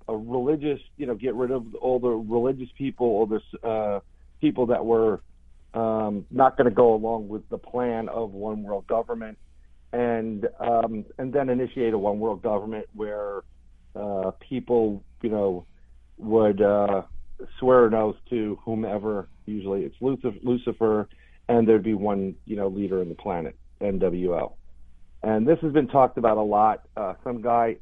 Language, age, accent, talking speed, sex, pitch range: English, 50-69, American, 160 wpm, male, 100-125 Hz